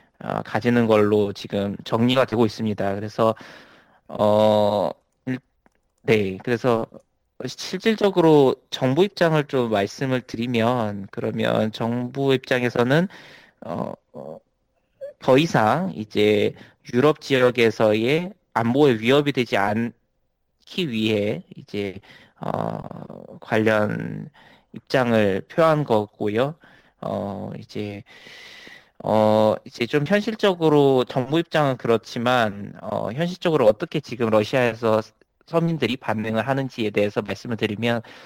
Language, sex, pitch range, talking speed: English, male, 110-140 Hz, 90 wpm